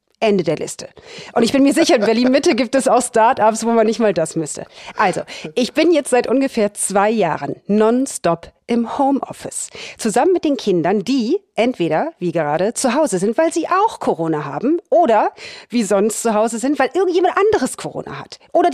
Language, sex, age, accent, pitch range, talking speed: German, female, 40-59, German, 185-270 Hz, 190 wpm